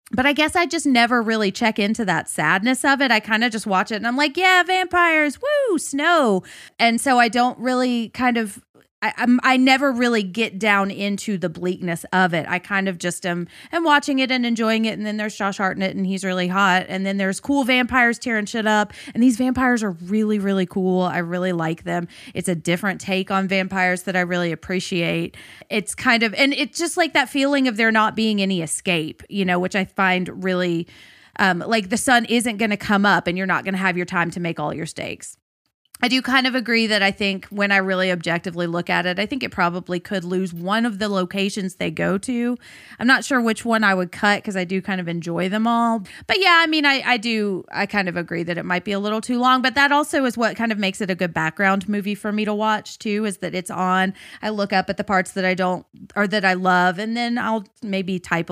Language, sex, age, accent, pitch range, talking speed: English, female, 30-49, American, 185-240 Hz, 245 wpm